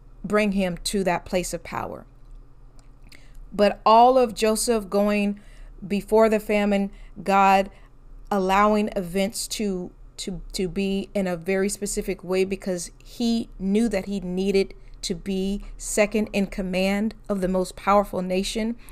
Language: English